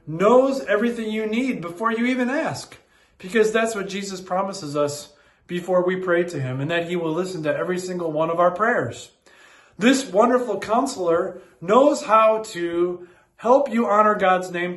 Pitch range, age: 160-220 Hz, 40-59